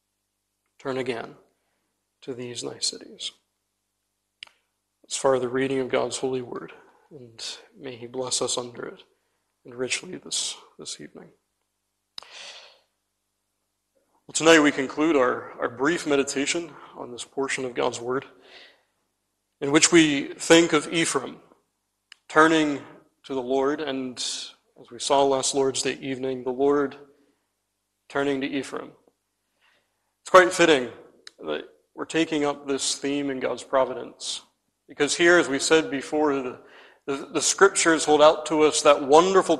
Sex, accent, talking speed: male, American, 140 wpm